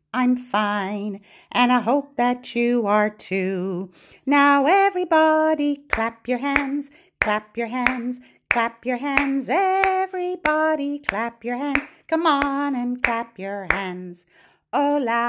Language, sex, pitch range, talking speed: English, female, 220-280 Hz, 120 wpm